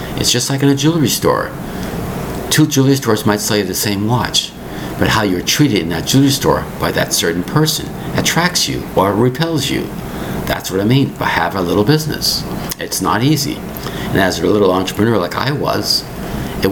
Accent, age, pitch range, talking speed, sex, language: American, 60-79, 95-140 Hz, 195 wpm, male, English